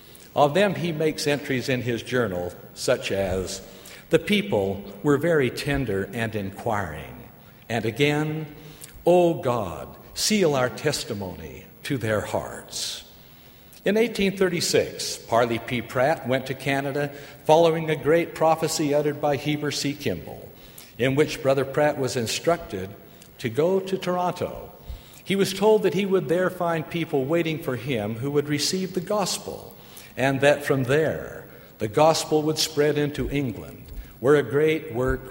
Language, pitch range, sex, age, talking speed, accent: English, 125-155 Hz, male, 60-79, 145 wpm, American